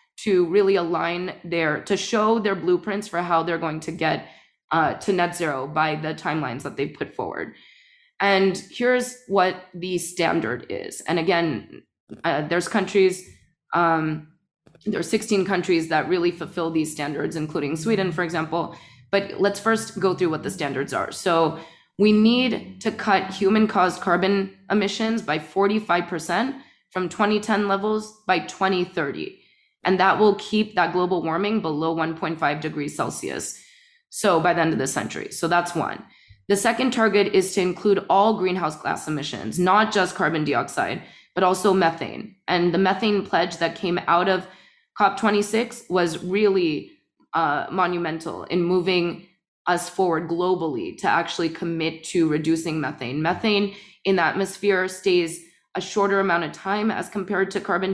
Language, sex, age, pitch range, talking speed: English, female, 20-39, 165-200 Hz, 155 wpm